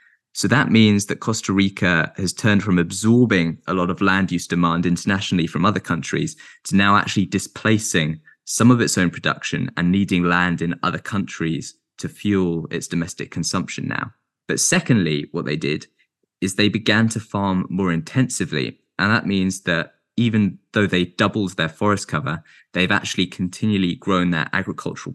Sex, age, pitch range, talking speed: male, 20-39, 90-110 Hz, 165 wpm